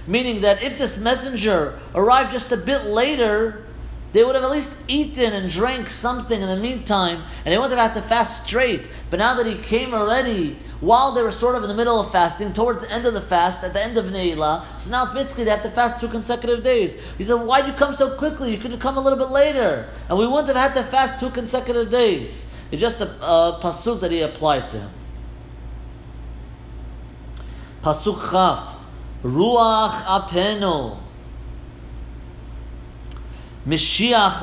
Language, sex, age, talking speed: English, male, 40-59, 185 wpm